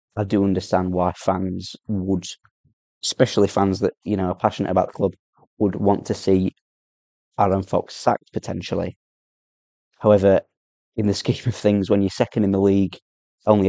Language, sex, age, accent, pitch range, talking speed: English, male, 20-39, British, 95-105 Hz, 160 wpm